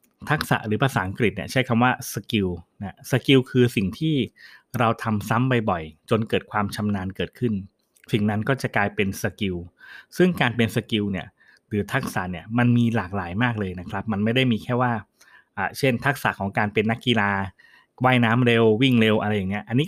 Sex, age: male, 20-39